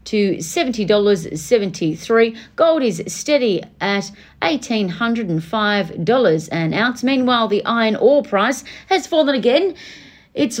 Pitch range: 200-275 Hz